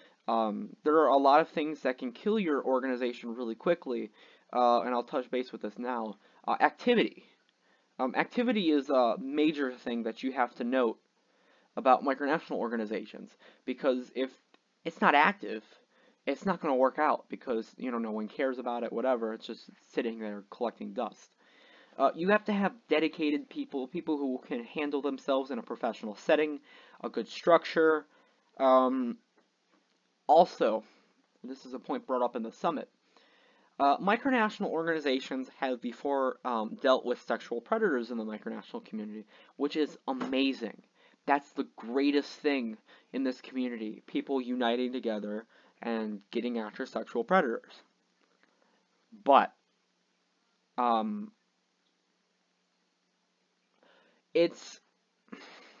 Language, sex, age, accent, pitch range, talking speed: English, male, 20-39, American, 120-155 Hz, 140 wpm